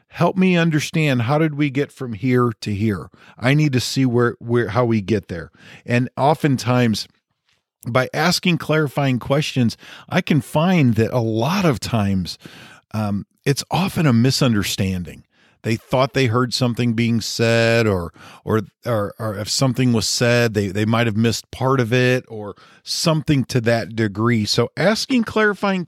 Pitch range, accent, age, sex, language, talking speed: 110-135 Hz, American, 40-59, male, English, 165 wpm